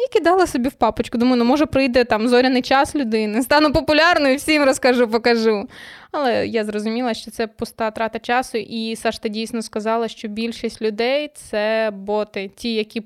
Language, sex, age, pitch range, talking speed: Ukrainian, female, 20-39, 225-260 Hz, 175 wpm